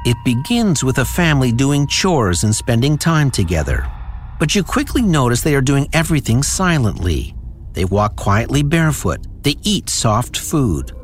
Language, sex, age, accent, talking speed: English, male, 60-79, American, 150 wpm